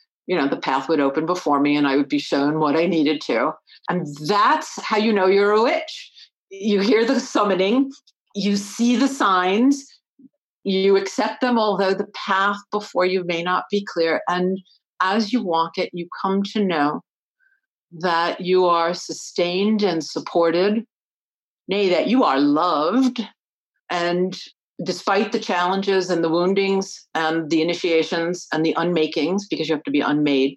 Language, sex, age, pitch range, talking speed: English, female, 50-69, 155-200 Hz, 165 wpm